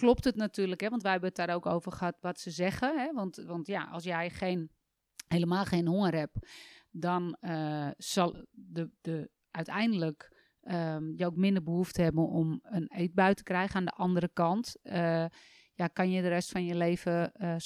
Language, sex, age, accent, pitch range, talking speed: Dutch, female, 30-49, Dutch, 170-200 Hz, 170 wpm